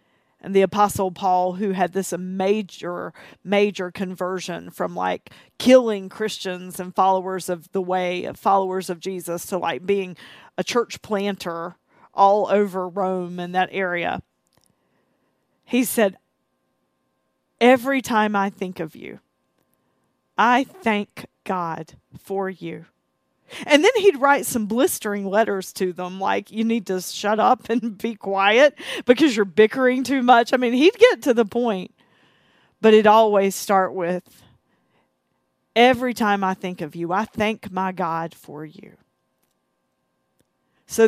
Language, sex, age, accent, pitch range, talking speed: English, female, 40-59, American, 185-230 Hz, 140 wpm